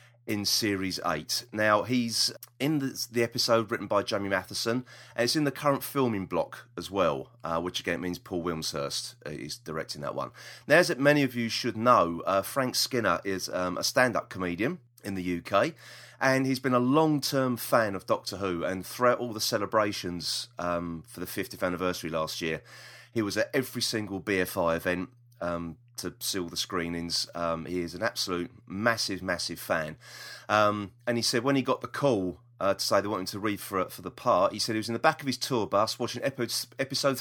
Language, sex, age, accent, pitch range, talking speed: English, male, 30-49, British, 100-135 Hz, 205 wpm